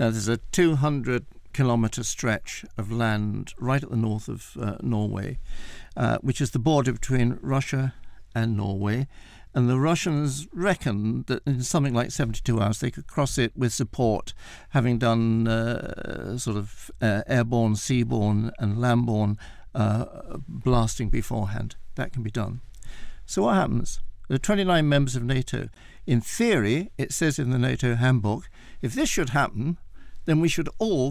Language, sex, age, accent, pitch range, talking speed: English, male, 60-79, British, 110-140 Hz, 160 wpm